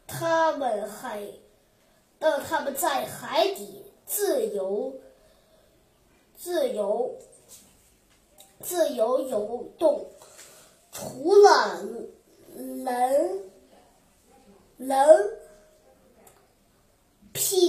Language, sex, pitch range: Chinese, female, 245-335 Hz